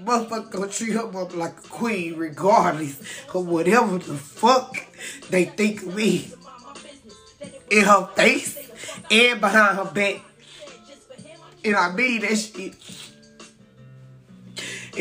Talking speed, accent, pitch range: 110 wpm, American, 210-275 Hz